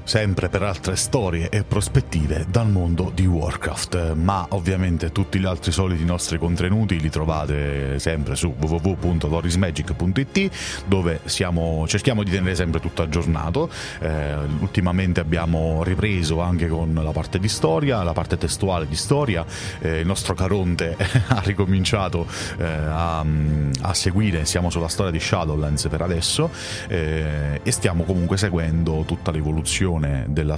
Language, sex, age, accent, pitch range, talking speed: Italian, male, 30-49, native, 80-95 Hz, 140 wpm